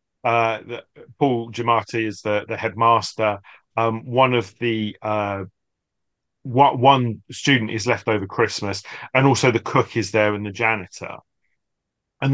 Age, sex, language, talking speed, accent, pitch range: 30-49, male, English, 150 wpm, British, 110-135 Hz